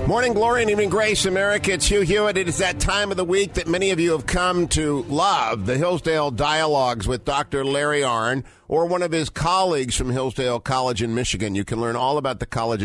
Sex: male